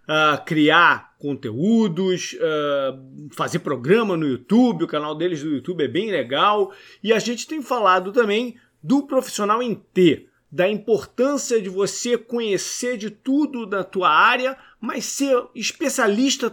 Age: 40-59